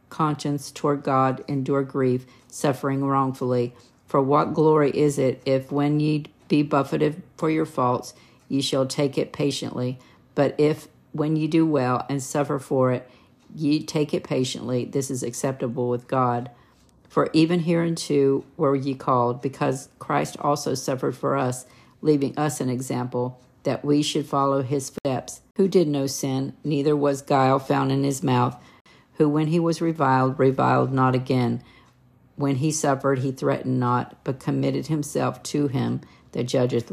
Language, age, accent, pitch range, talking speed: English, 50-69, American, 125-145 Hz, 160 wpm